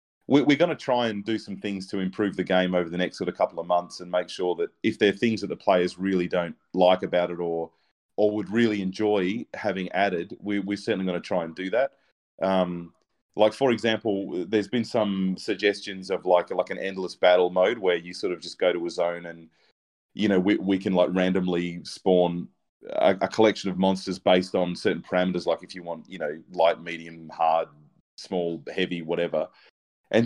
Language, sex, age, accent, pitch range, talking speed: English, male, 30-49, Australian, 90-110 Hz, 210 wpm